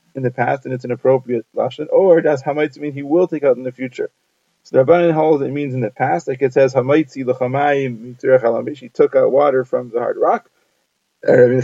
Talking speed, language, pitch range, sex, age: 220 wpm, English, 135-170 Hz, male, 20-39